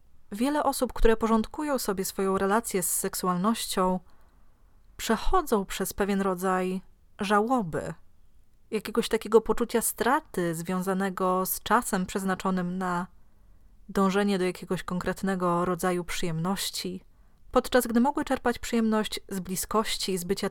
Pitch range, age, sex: 180-225 Hz, 20-39, female